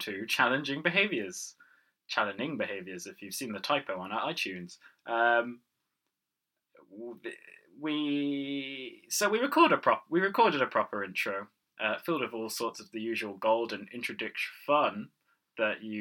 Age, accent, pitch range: 20-39, British, 105-145 Hz